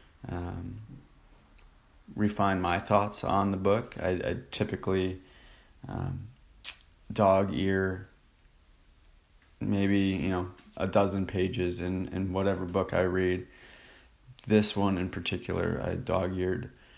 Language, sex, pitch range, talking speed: English, male, 90-100 Hz, 115 wpm